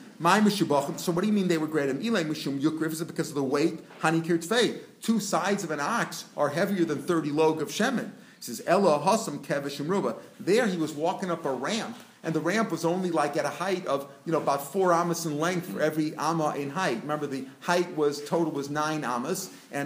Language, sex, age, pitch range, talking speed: English, male, 40-59, 155-185 Hz, 210 wpm